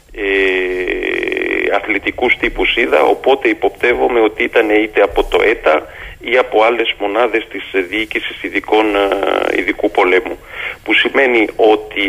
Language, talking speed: Greek, 115 wpm